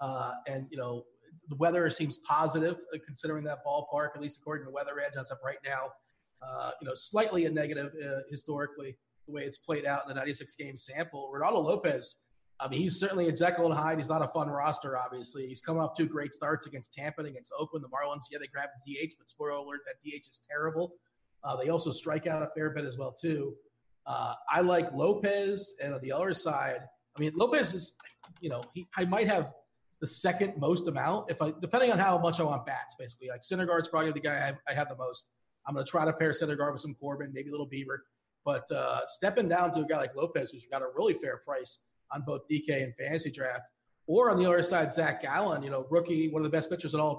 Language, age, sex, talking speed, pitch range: English, 30-49, male, 240 wpm, 140-165 Hz